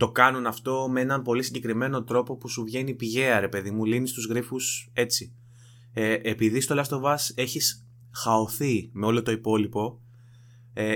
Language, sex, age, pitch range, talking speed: Greek, male, 20-39, 115-135 Hz, 165 wpm